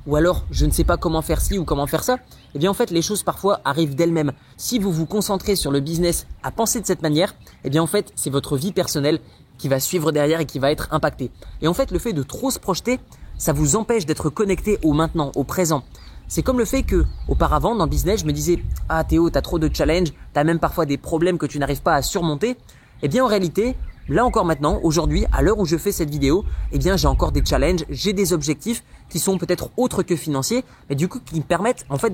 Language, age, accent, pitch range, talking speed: French, 20-39, French, 140-190 Hz, 255 wpm